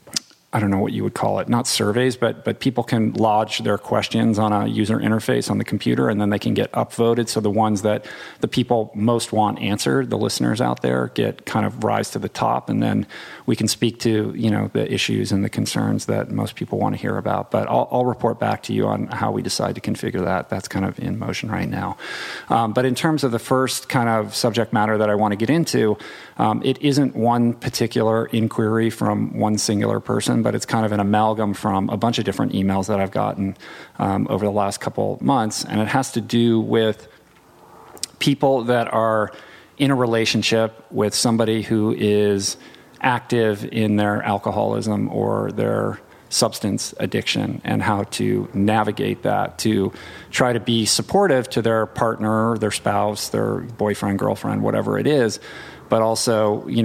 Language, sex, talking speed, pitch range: English, male, 200 wpm, 105-120 Hz